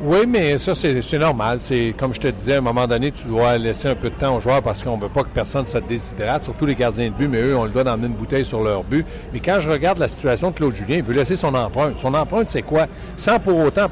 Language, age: French, 60-79